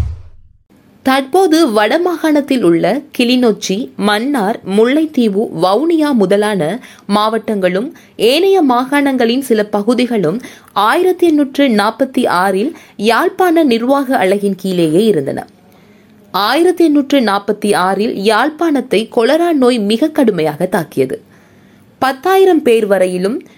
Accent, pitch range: native, 205-290 Hz